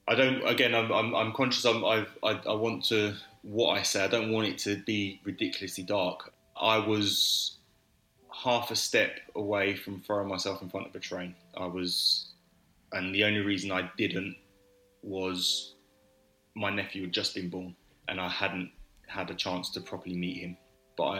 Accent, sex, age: British, male, 20-39